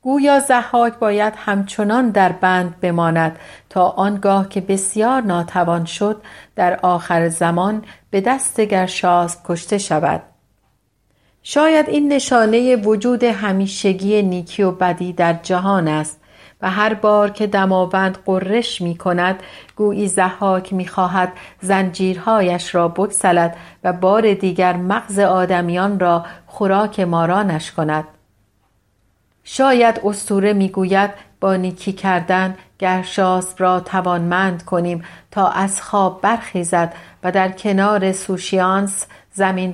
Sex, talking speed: female, 110 wpm